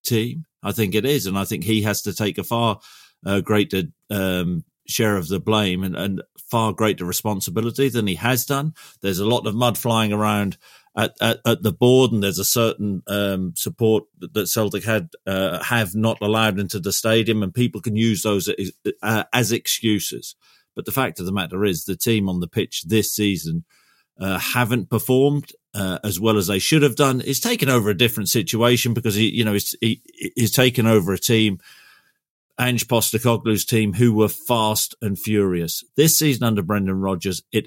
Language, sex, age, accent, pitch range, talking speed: English, male, 50-69, British, 95-115 Hz, 195 wpm